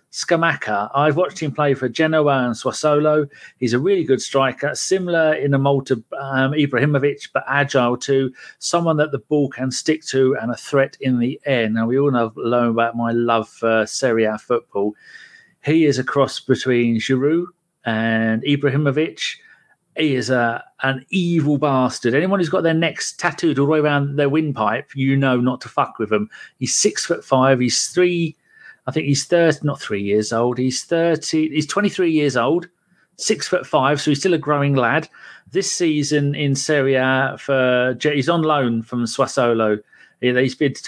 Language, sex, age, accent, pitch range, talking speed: English, male, 40-59, British, 120-150 Hz, 180 wpm